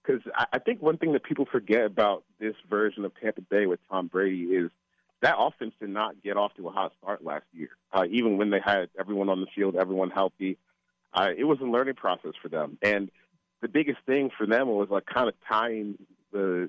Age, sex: 30-49, male